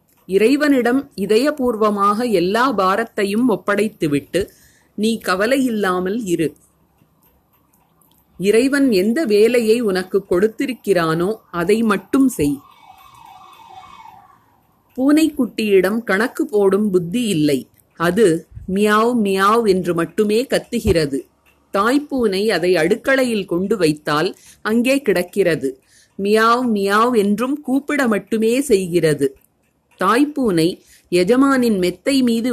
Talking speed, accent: 80 wpm, native